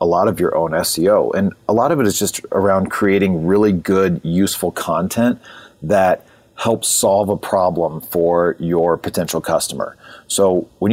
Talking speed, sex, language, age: 165 wpm, male, English, 40-59